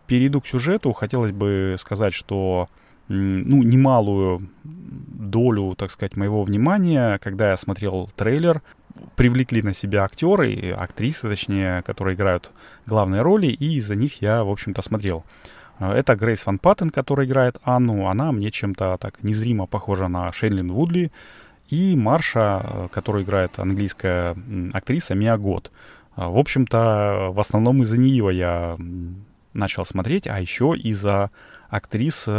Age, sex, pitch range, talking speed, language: 30-49, male, 95-125 Hz, 135 wpm, Russian